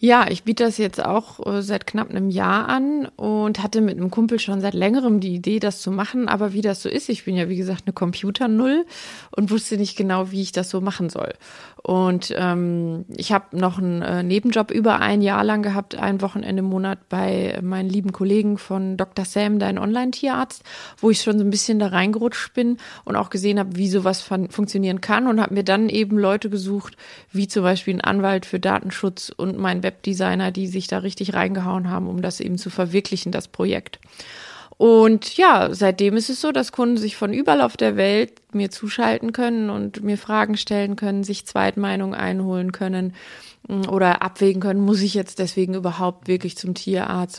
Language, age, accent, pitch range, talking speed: German, 20-39, German, 185-220 Hz, 200 wpm